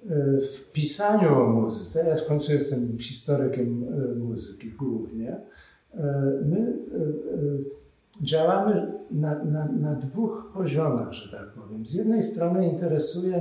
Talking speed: 105 wpm